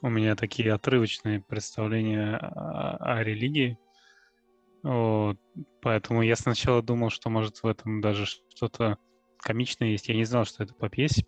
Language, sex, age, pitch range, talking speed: Russian, male, 20-39, 110-120 Hz, 145 wpm